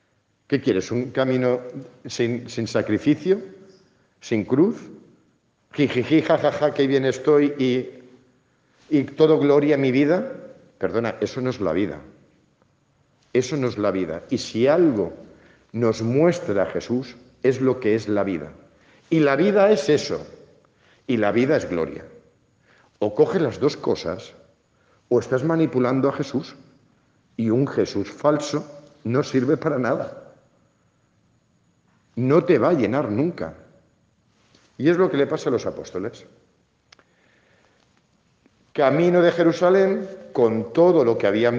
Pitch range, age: 115-155 Hz, 50-69